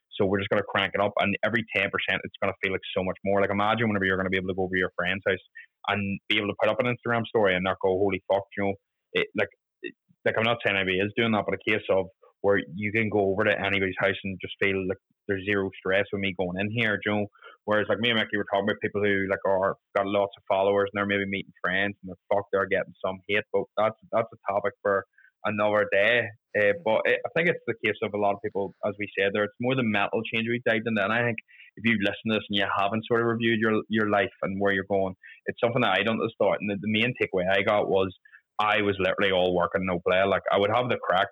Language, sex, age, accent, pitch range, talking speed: English, male, 20-39, Irish, 95-110 Hz, 285 wpm